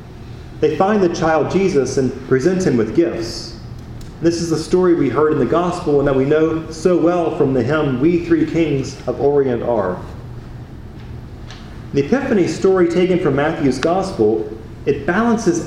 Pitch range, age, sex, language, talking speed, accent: 120-170 Hz, 30-49, male, English, 165 wpm, American